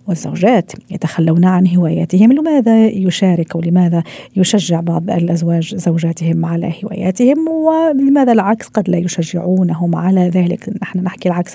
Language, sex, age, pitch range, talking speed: Arabic, female, 40-59, 170-210 Hz, 120 wpm